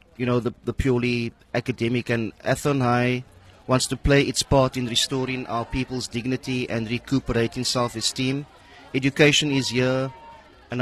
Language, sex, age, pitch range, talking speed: English, male, 30-49, 120-140 Hz, 140 wpm